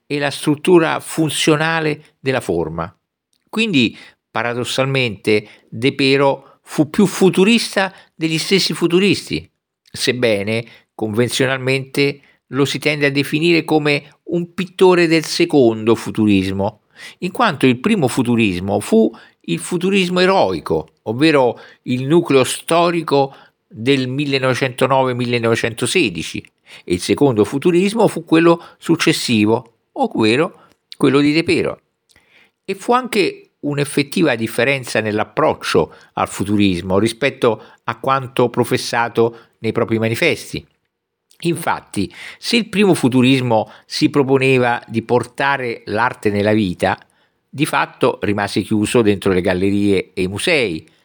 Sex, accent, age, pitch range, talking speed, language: male, native, 50-69, 110-160 Hz, 110 wpm, Italian